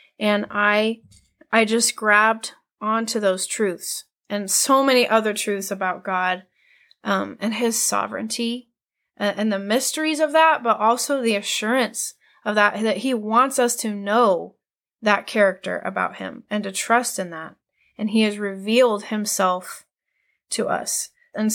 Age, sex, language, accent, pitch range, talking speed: 30-49, female, English, American, 200-240 Hz, 150 wpm